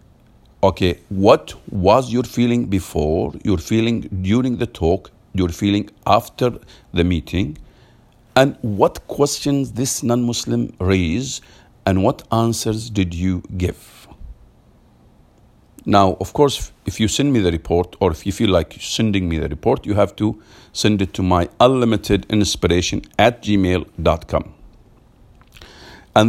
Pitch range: 90-115 Hz